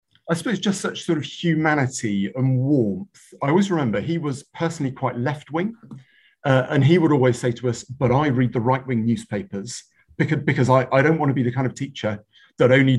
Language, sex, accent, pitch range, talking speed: English, male, British, 105-145 Hz, 215 wpm